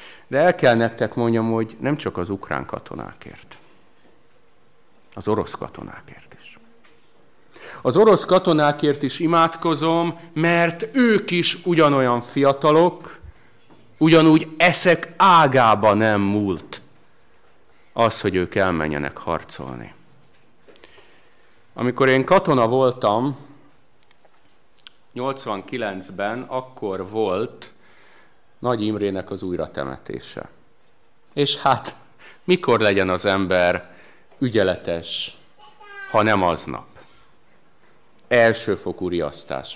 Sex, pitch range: male, 105-170 Hz